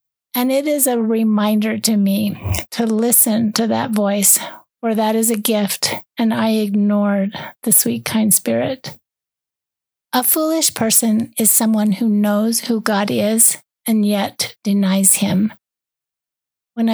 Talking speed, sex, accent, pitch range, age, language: 140 wpm, female, American, 200-235 Hz, 40-59, English